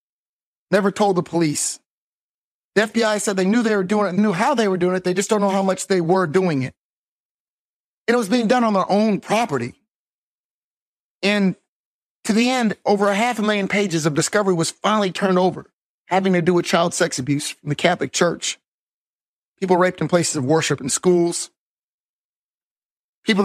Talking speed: 185 wpm